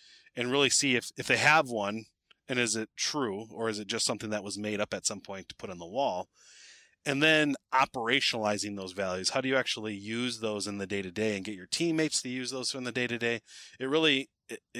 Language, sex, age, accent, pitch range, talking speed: English, male, 30-49, American, 100-130 Hz, 245 wpm